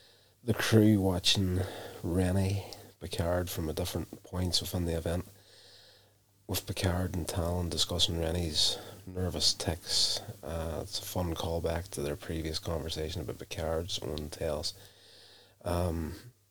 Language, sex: English, male